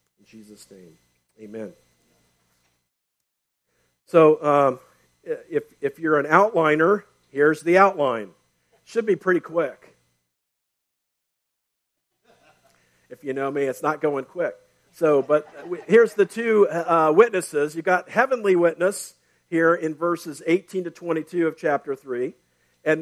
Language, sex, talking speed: English, male, 125 wpm